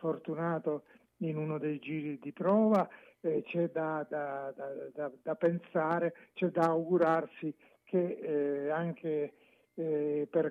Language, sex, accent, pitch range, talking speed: Italian, male, native, 150-170 Hz, 115 wpm